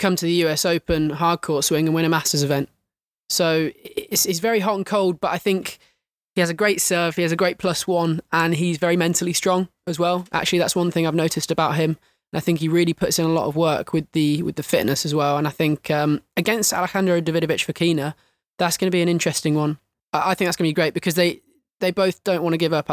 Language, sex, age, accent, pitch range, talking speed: English, male, 20-39, British, 160-190 Hz, 255 wpm